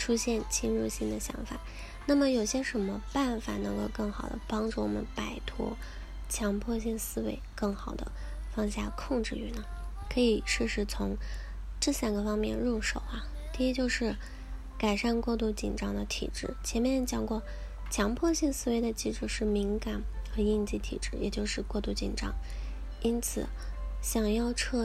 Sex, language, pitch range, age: female, Chinese, 200-235 Hz, 10-29